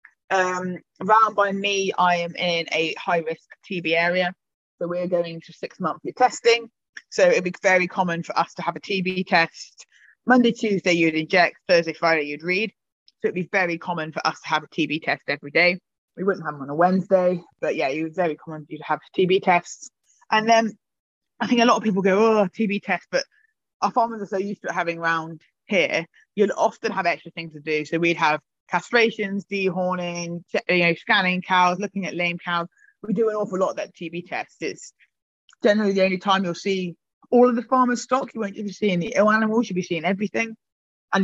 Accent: British